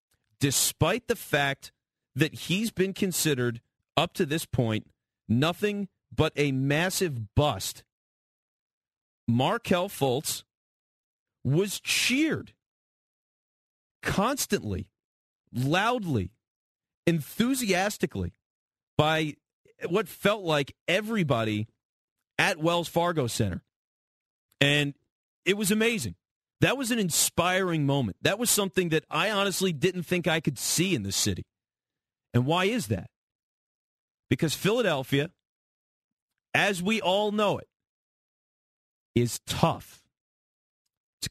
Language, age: English, 40-59